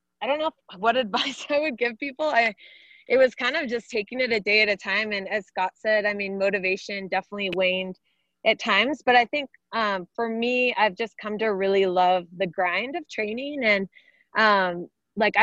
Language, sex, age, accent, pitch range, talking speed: English, female, 20-39, American, 190-230 Hz, 200 wpm